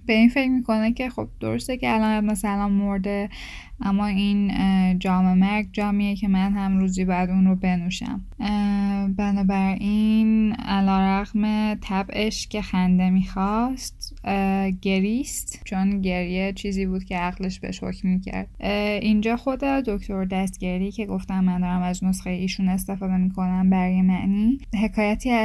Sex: female